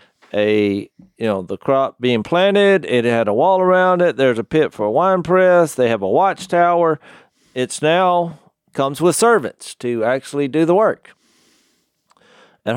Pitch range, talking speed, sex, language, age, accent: 110-150 Hz, 165 wpm, male, English, 50-69, American